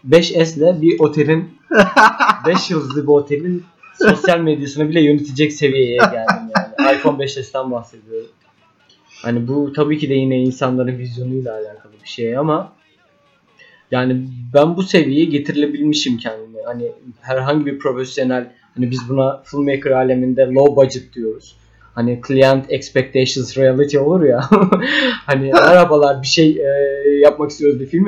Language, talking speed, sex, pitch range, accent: Turkish, 135 wpm, male, 130-165 Hz, native